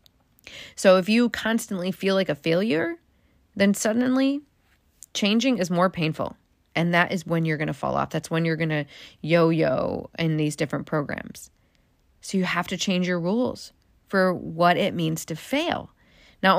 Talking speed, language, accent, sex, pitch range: 170 wpm, English, American, female, 165-225 Hz